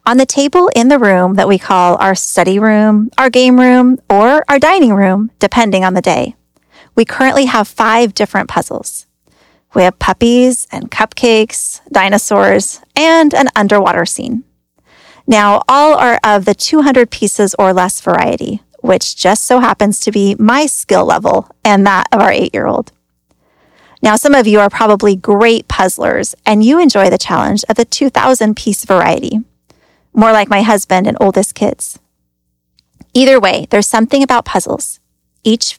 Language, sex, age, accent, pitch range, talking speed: English, female, 20-39, American, 185-245 Hz, 160 wpm